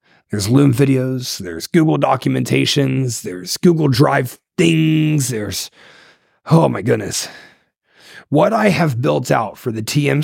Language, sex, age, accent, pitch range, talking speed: English, male, 30-49, American, 115-155 Hz, 130 wpm